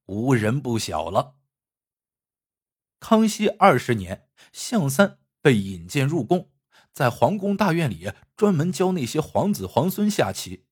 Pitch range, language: 120-200 Hz, Chinese